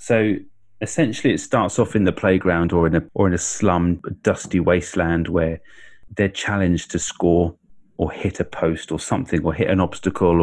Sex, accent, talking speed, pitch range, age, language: male, British, 190 wpm, 85-100 Hz, 30-49, English